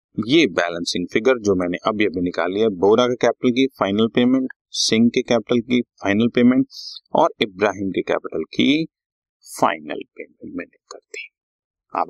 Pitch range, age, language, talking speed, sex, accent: 100-135 Hz, 30-49, Hindi, 155 wpm, male, native